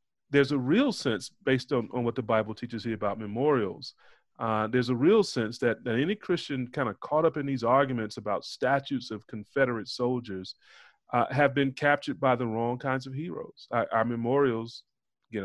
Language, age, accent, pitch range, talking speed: English, 30-49, American, 110-140 Hz, 190 wpm